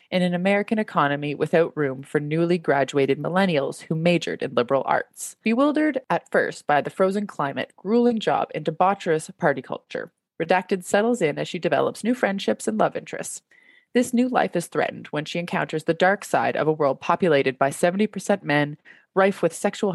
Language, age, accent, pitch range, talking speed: English, 20-39, American, 150-205 Hz, 180 wpm